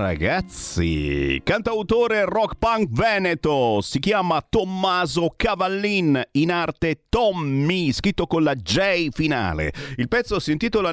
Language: Italian